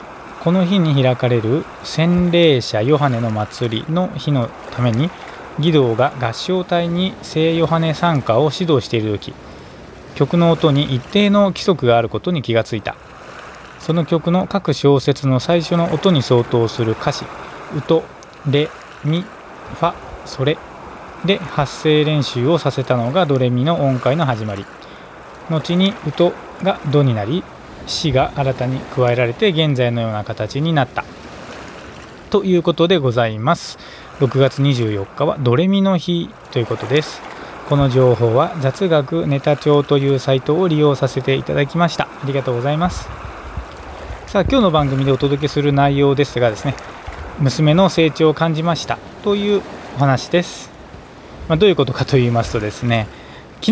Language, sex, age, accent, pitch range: Japanese, male, 20-39, native, 125-165 Hz